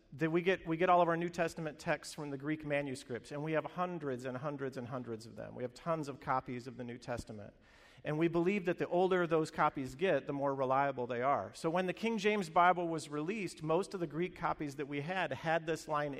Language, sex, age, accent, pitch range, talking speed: English, male, 50-69, American, 140-175 Hz, 245 wpm